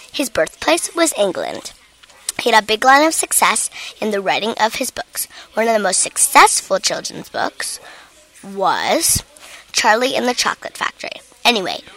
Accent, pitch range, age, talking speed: American, 195-295 Hz, 10-29, 155 wpm